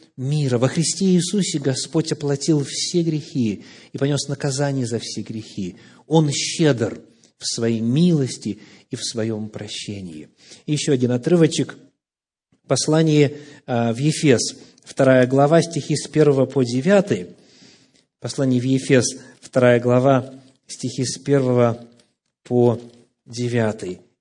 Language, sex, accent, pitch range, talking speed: Russian, male, native, 125-160 Hz, 115 wpm